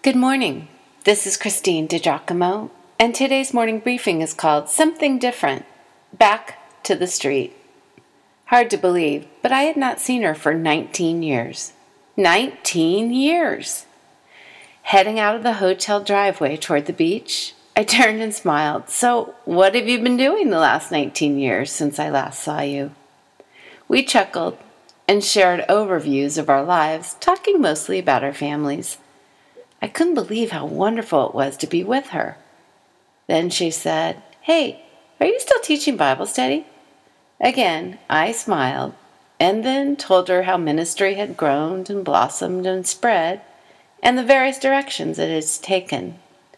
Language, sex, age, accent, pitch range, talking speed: English, female, 40-59, American, 160-260 Hz, 150 wpm